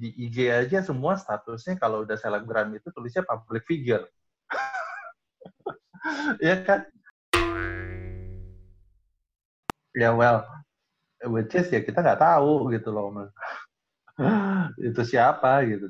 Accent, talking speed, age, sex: native, 105 wpm, 30-49, male